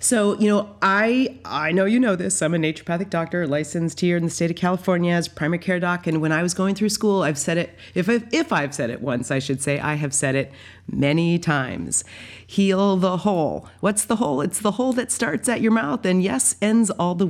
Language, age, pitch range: English, 30-49, 155-205 Hz